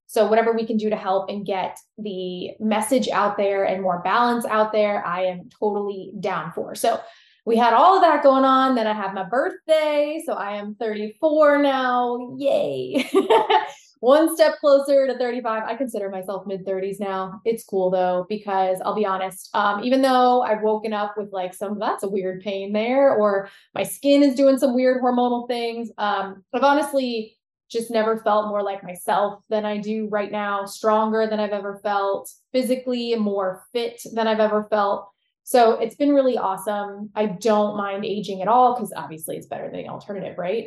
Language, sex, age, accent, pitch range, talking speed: English, female, 20-39, American, 205-250 Hz, 190 wpm